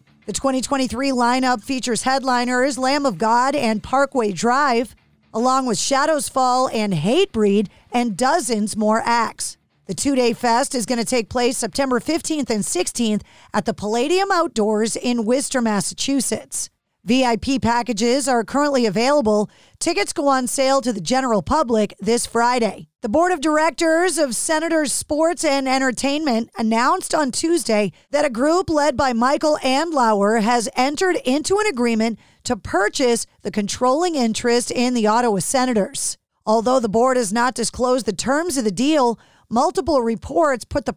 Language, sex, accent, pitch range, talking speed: English, female, American, 225-275 Hz, 150 wpm